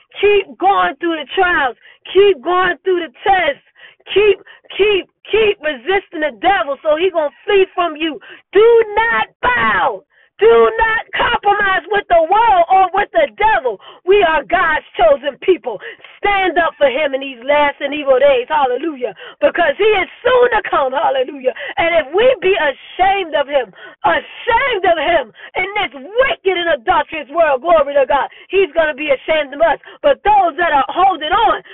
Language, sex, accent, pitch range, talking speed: English, female, American, 295-410 Hz, 170 wpm